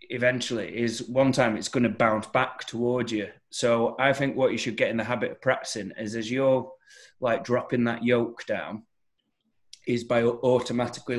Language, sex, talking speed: English, male, 180 wpm